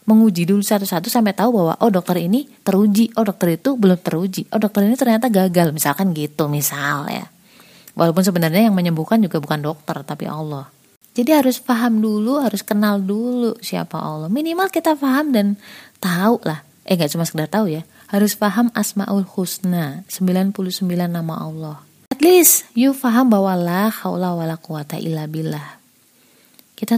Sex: female